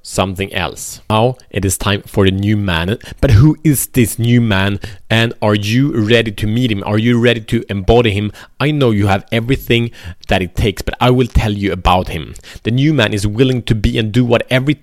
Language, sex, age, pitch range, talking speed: Swedish, male, 30-49, 105-135 Hz, 225 wpm